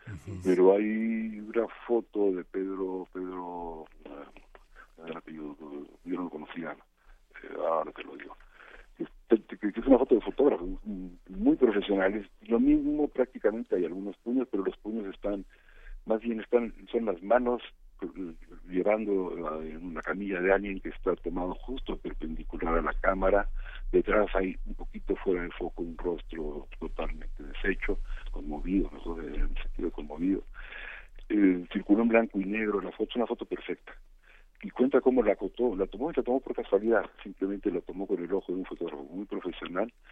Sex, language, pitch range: male, Spanish, 90-115 Hz